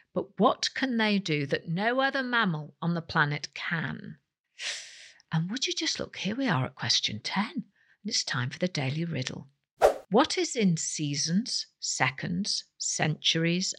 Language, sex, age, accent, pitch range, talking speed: English, female, 50-69, British, 160-255 Hz, 160 wpm